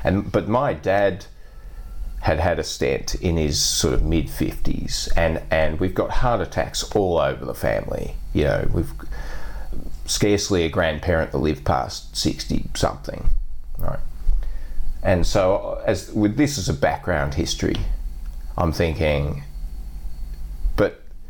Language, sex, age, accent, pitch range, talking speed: English, male, 40-59, Australian, 75-100 Hz, 135 wpm